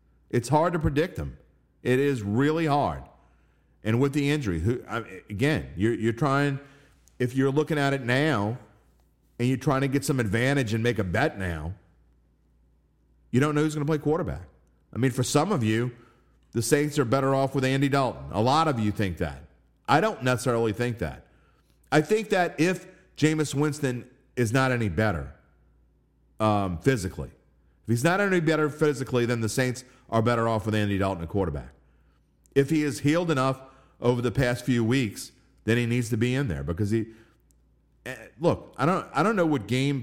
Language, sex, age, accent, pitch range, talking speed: English, male, 40-59, American, 85-135 Hz, 185 wpm